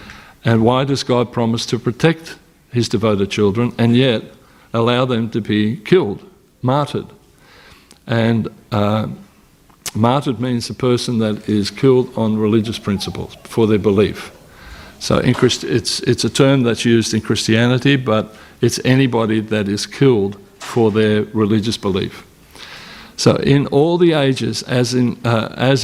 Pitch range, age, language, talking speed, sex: 110-130 Hz, 50-69, English, 145 wpm, male